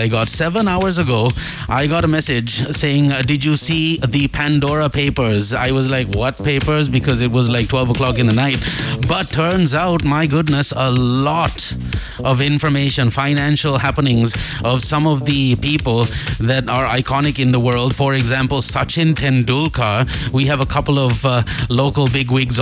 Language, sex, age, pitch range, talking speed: English, male, 30-49, 115-140 Hz, 170 wpm